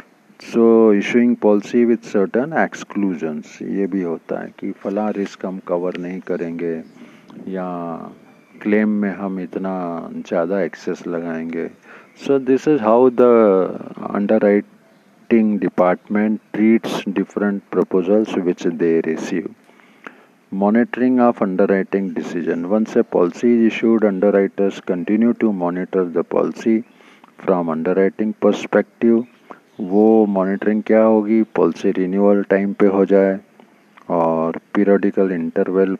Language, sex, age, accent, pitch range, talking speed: Hindi, male, 50-69, native, 90-110 Hz, 115 wpm